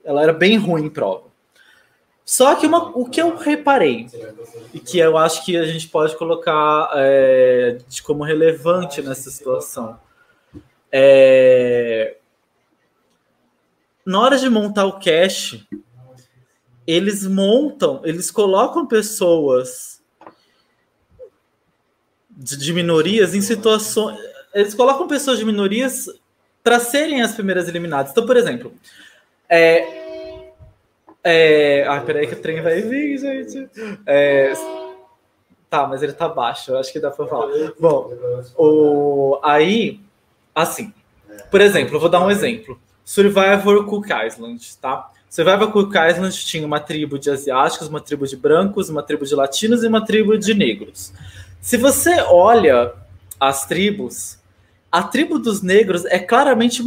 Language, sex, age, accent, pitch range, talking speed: Portuguese, male, 20-39, Brazilian, 135-225 Hz, 130 wpm